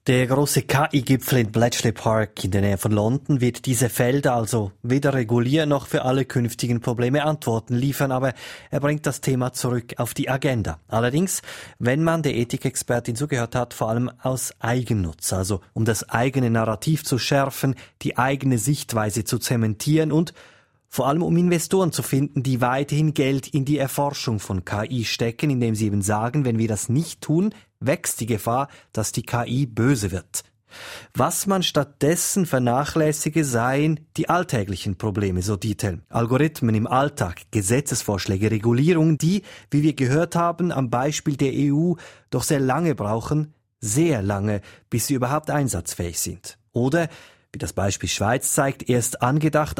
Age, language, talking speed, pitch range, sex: 30-49, German, 160 wpm, 115-145 Hz, male